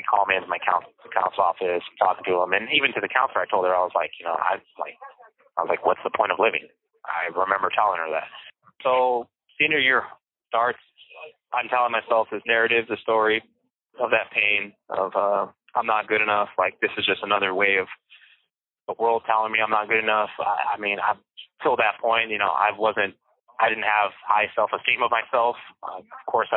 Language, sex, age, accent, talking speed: English, male, 20-39, American, 215 wpm